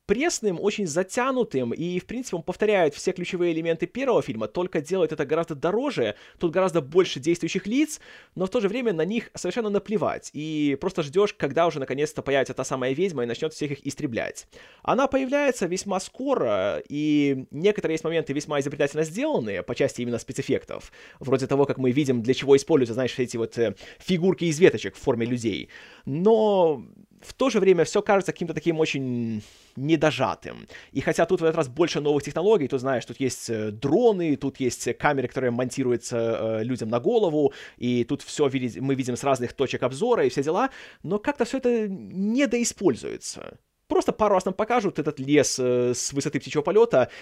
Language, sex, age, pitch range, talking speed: Russian, male, 20-39, 135-200 Hz, 180 wpm